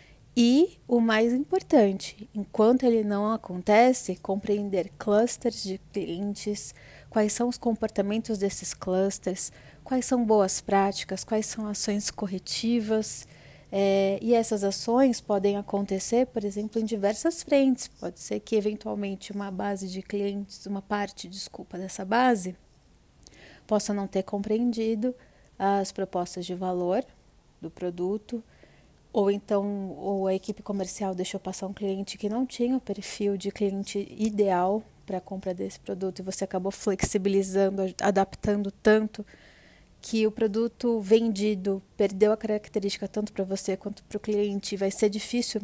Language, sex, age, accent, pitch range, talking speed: Portuguese, female, 30-49, Brazilian, 190-220 Hz, 135 wpm